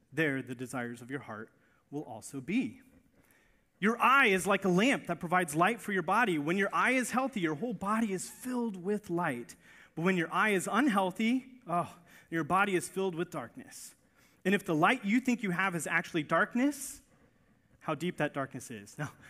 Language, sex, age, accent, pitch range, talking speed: English, male, 30-49, American, 145-210 Hz, 195 wpm